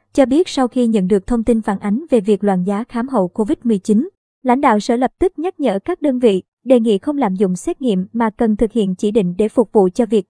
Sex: male